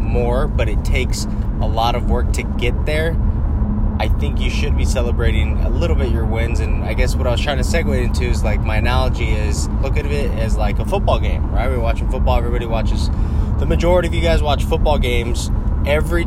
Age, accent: 20-39, American